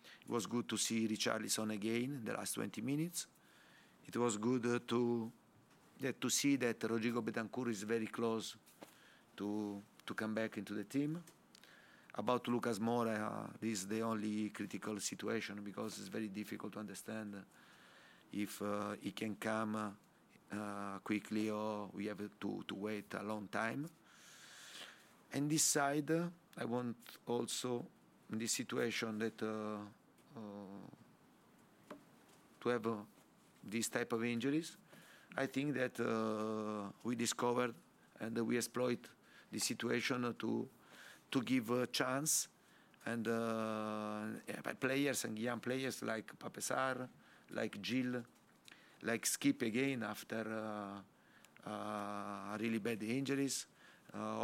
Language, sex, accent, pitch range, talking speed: English, male, Italian, 105-120 Hz, 135 wpm